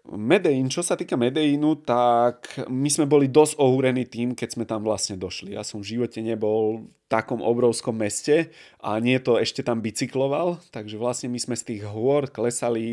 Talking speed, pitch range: 185 wpm, 110-135 Hz